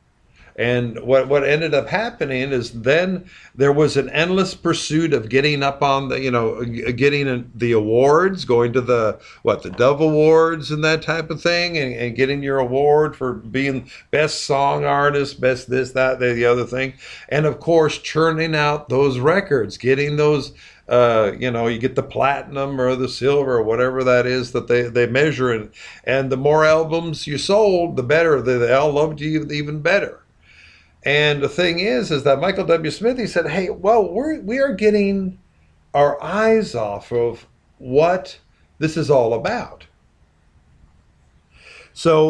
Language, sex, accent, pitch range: English, male, American, 120-155 Hz